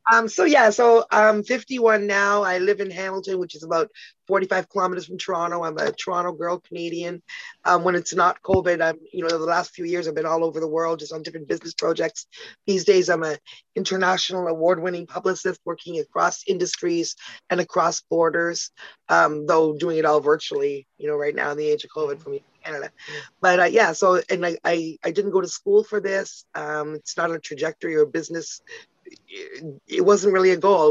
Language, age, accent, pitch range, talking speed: English, 30-49, American, 160-200 Hz, 205 wpm